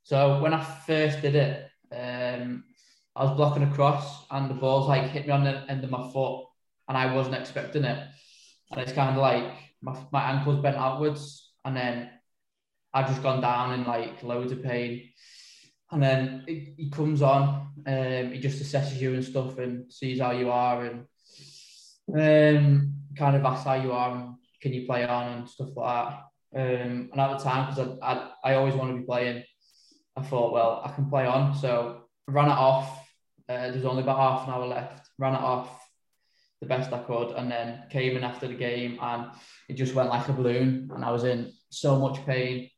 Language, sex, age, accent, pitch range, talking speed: English, male, 10-29, British, 125-140 Hz, 205 wpm